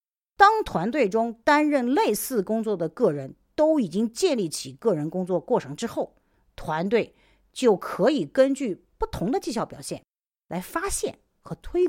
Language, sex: Chinese, female